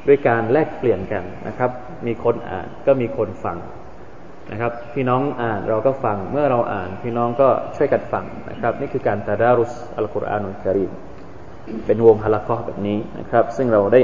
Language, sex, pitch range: Thai, male, 110-135 Hz